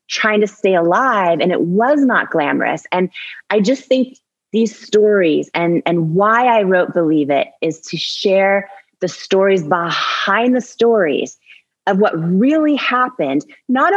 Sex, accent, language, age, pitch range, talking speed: female, American, English, 30-49, 160-200 Hz, 150 wpm